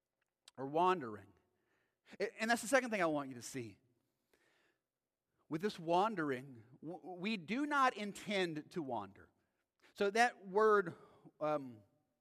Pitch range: 180-265 Hz